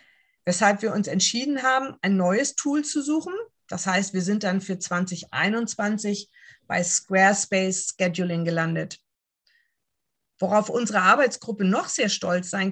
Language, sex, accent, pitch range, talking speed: English, female, German, 180-220 Hz, 130 wpm